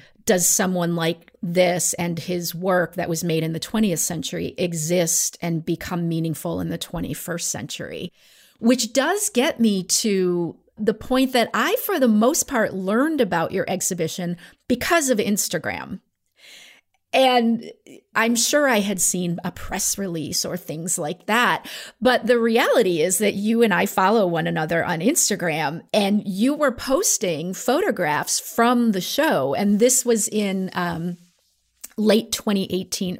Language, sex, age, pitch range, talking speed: English, female, 40-59, 175-225 Hz, 150 wpm